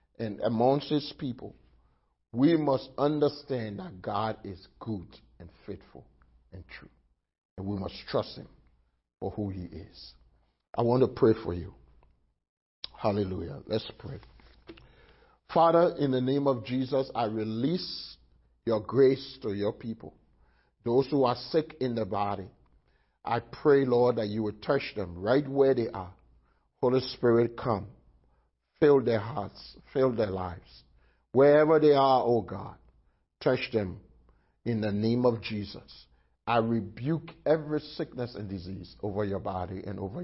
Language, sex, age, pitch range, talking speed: English, male, 50-69, 90-130 Hz, 145 wpm